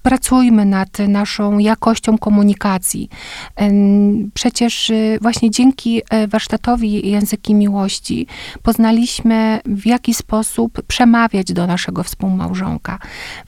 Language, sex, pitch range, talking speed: Polish, female, 200-225 Hz, 85 wpm